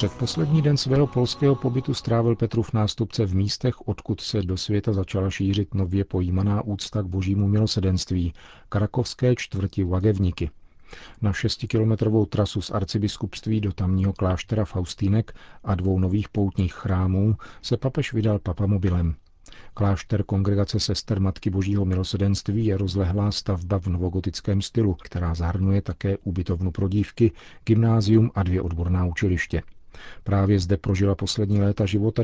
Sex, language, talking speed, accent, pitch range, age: male, Czech, 135 wpm, native, 90-105 Hz, 40-59